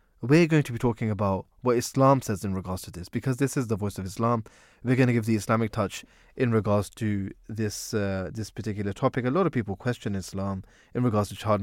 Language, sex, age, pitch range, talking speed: English, male, 20-39, 105-130 Hz, 230 wpm